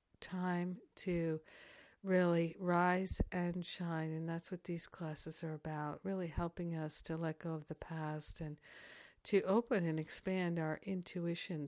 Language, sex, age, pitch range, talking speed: English, female, 60-79, 170-195 Hz, 150 wpm